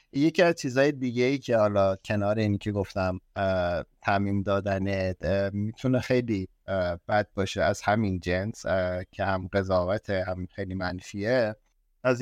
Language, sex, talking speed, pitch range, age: Persian, male, 130 wpm, 100-130 Hz, 50-69